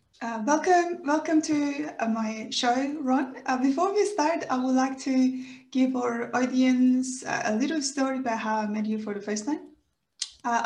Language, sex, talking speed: English, female, 185 wpm